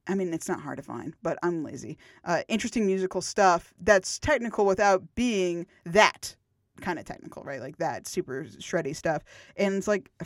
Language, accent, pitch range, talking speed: English, American, 170-210 Hz, 185 wpm